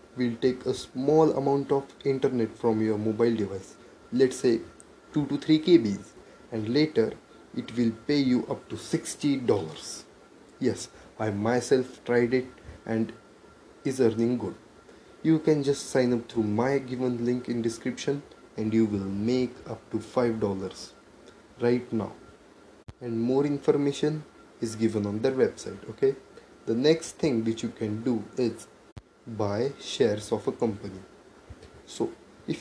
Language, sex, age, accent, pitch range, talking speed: English, male, 20-39, Indian, 115-140 Hz, 145 wpm